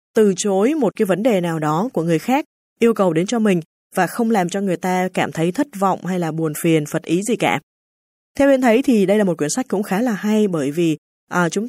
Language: Vietnamese